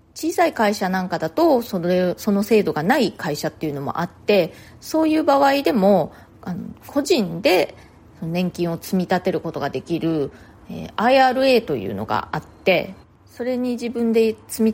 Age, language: 30-49, Japanese